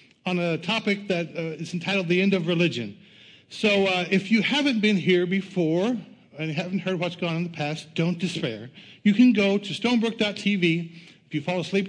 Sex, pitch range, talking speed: male, 155-195 Hz, 195 wpm